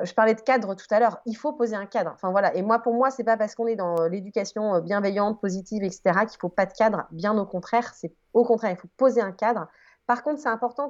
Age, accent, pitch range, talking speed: 30-49, French, 180-240 Hz, 275 wpm